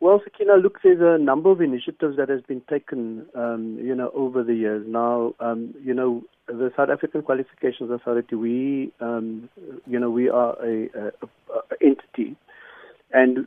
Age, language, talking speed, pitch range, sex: 50-69, English, 170 wpm, 115-130 Hz, male